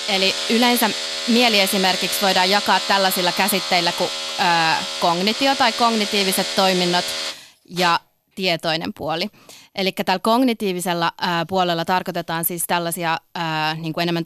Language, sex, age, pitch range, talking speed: Finnish, female, 20-39, 165-200 Hz, 120 wpm